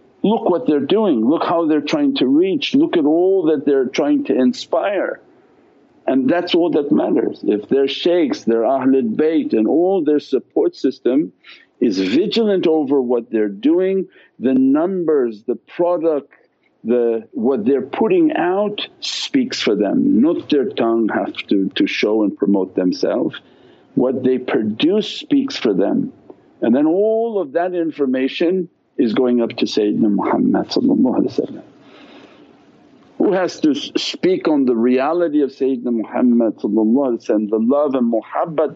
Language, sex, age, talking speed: English, male, 50-69, 145 wpm